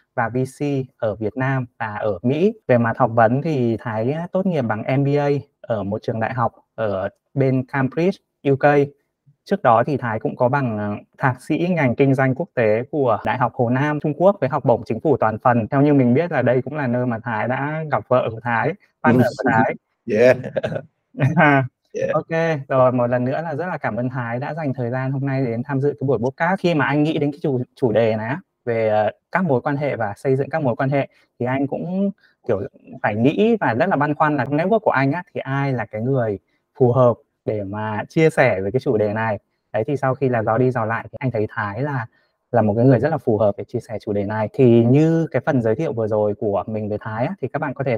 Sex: male